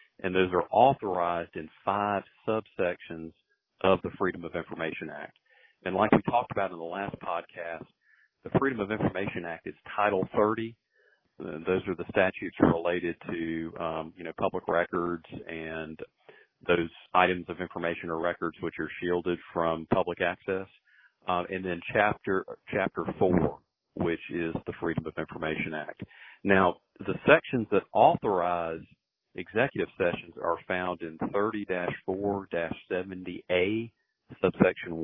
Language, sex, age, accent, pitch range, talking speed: English, male, 40-59, American, 85-95 Hz, 135 wpm